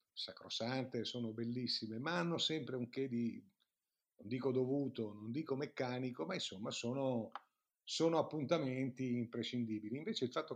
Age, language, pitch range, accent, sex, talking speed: 50-69, Italian, 110-130 Hz, native, male, 135 wpm